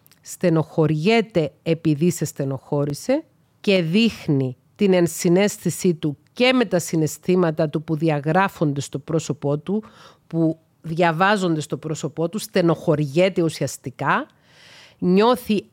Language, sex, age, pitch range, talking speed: Greek, female, 40-59, 150-190 Hz, 105 wpm